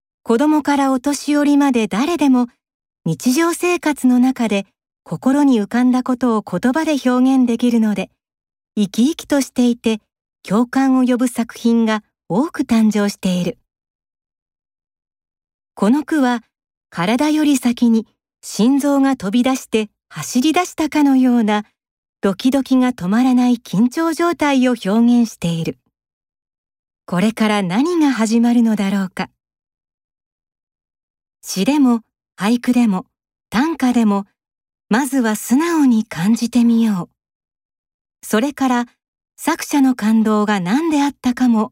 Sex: female